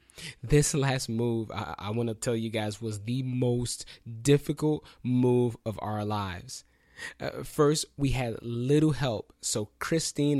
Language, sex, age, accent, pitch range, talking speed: English, male, 20-39, American, 110-135 Hz, 145 wpm